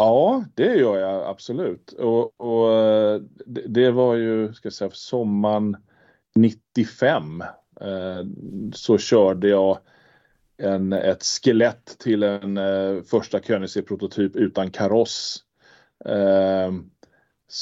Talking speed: 110 wpm